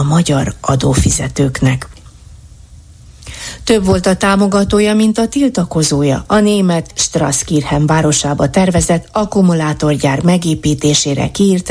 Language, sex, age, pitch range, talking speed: Hungarian, female, 30-49, 145-195 Hz, 90 wpm